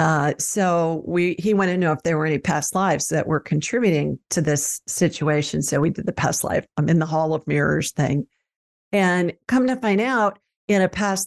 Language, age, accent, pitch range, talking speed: English, 50-69, American, 170-215 Hz, 215 wpm